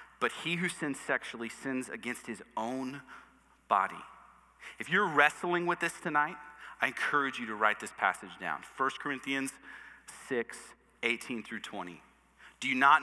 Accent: American